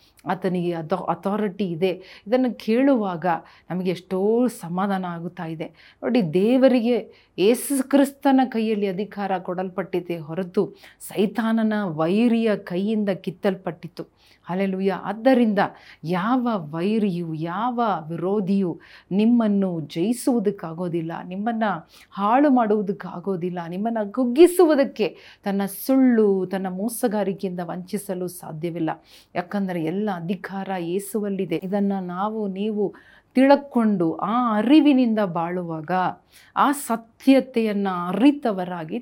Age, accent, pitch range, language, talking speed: 40-59, native, 180-230 Hz, Kannada, 85 wpm